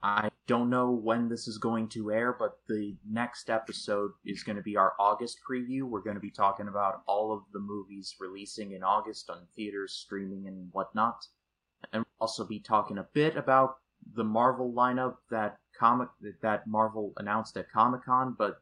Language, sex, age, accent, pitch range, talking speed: English, male, 30-49, American, 95-115 Hz, 185 wpm